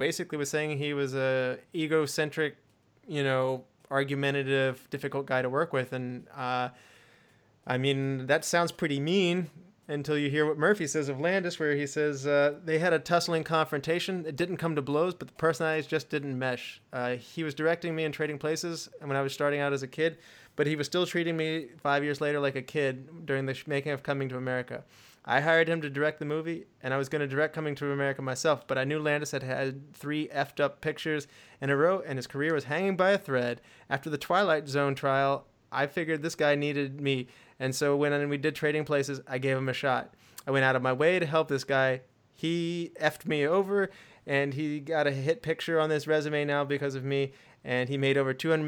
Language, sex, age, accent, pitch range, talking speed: English, male, 20-39, American, 135-155 Hz, 220 wpm